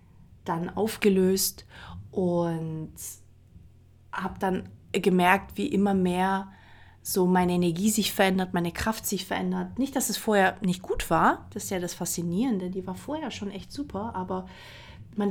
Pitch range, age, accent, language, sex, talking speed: 180-205 Hz, 30-49, German, German, female, 150 wpm